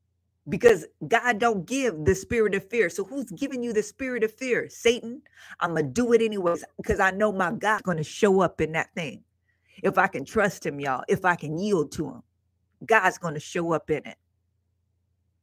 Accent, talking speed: American, 210 wpm